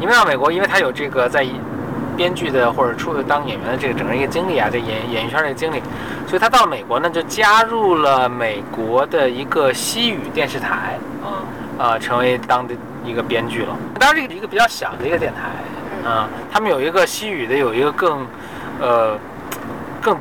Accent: native